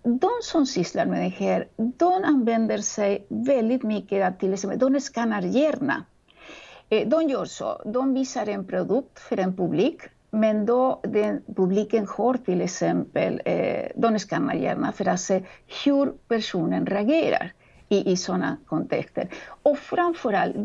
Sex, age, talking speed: female, 50-69, 135 wpm